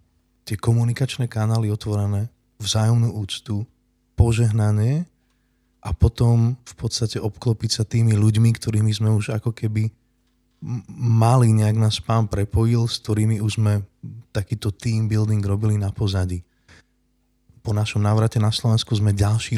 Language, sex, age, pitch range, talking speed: Slovak, male, 20-39, 100-115 Hz, 130 wpm